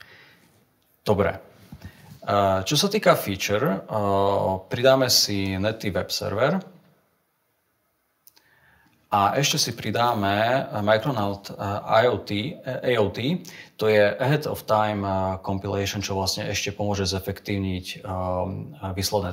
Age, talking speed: 30-49, 90 wpm